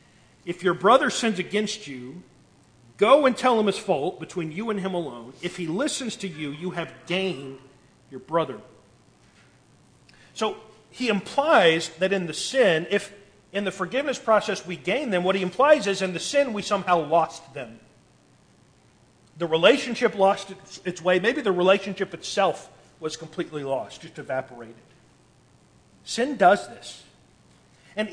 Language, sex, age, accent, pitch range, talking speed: English, male, 40-59, American, 165-210 Hz, 150 wpm